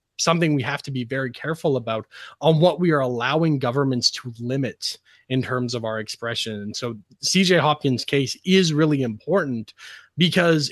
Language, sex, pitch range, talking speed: English, male, 130-170 Hz, 170 wpm